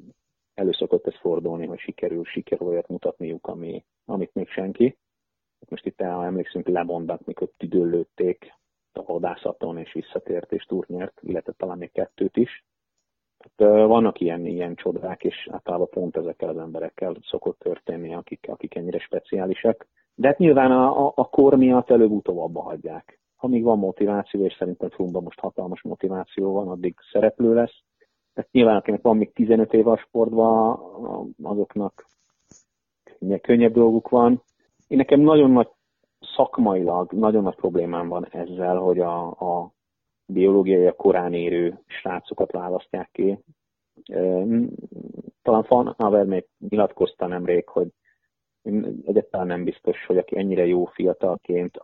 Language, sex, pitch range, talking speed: Hungarian, male, 90-125 Hz, 140 wpm